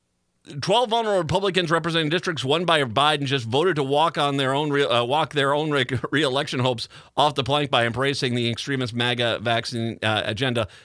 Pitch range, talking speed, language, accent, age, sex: 120-180 Hz, 190 wpm, English, American, 40-59, male